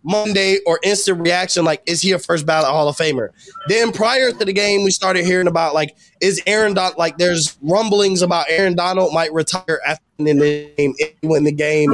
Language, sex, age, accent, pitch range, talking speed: English, male, 20-39, American, 160-200 Hz, 215 wpm